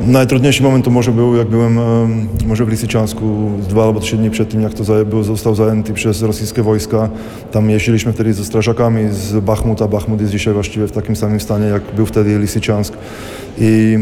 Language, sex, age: Polish, male, 20-39